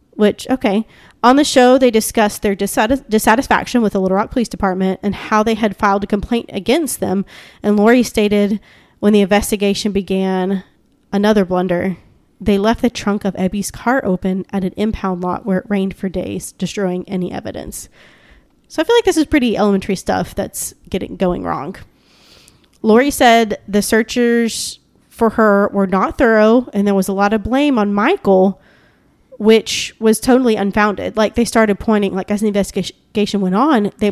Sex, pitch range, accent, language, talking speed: female, 195-235 Hz, American, English, 175 wpm